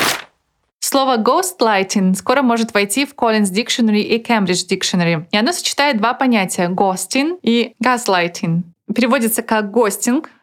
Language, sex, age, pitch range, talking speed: Russian, female, 20-39, 195-245 Hz, 130 wpm